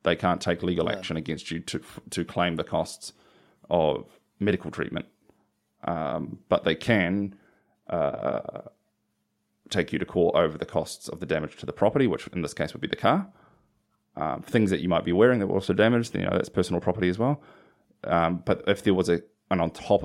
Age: 30-49